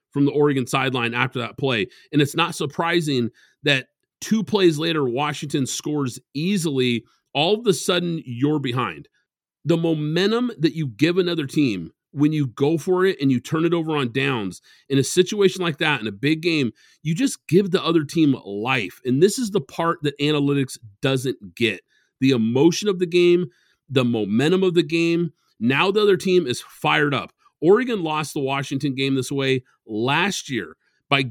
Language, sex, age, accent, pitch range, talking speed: English, male, 40-59, American, 135-175 Hz, 180 wpm